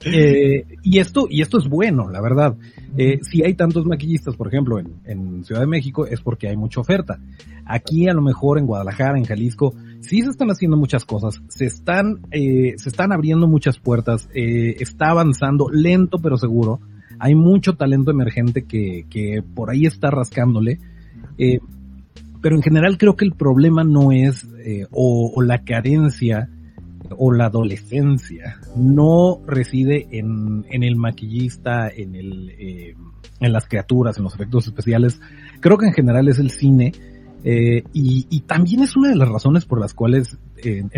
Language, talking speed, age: Spanish, 175 wpm, 40-59